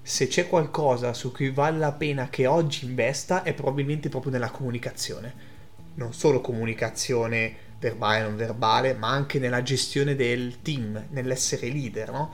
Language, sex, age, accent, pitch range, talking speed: Italian, male, 30-49, native, 120-150 Hz, 155 wpm